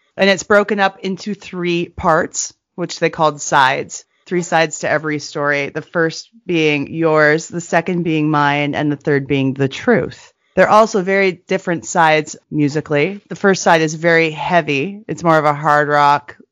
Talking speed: 175 wpm